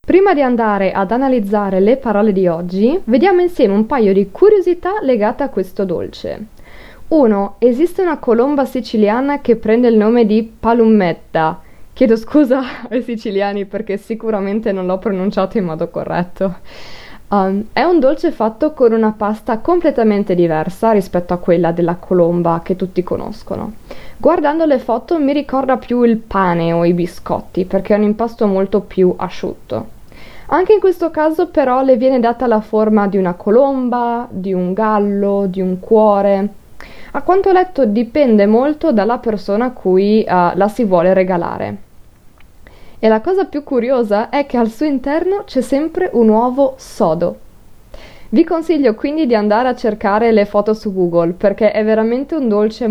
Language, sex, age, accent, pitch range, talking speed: Italian, female, 20-39, native, 190-255 Hz, 160 wpm